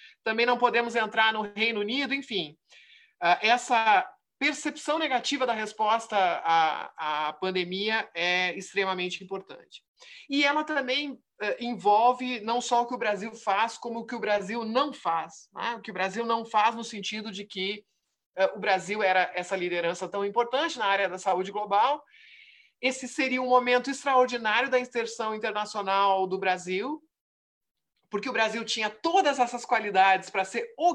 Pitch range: 195-255 Hz